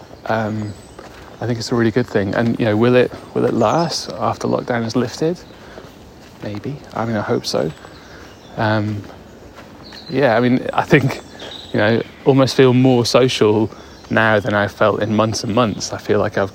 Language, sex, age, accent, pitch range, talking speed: English, male, 30-49, British, 105-120 Hz, 180 wpm